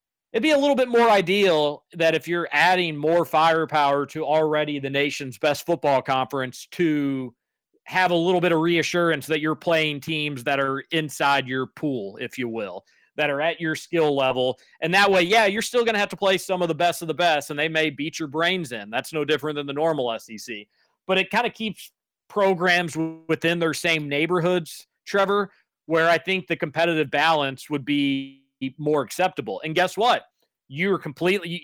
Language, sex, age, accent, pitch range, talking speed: English, male, 40-59, American, 145-190 Hz, 195 wpm